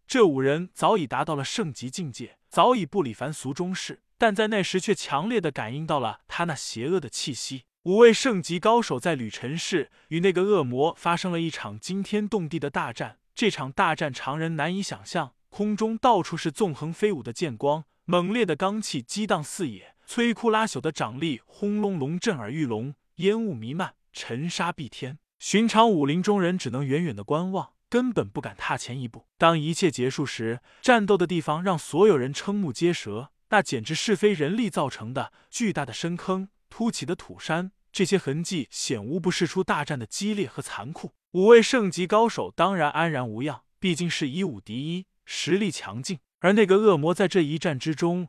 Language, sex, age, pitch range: Chinese, male, 20-39, 145-200 Hz